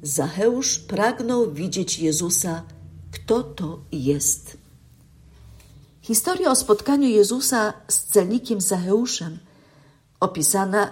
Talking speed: 80 wpm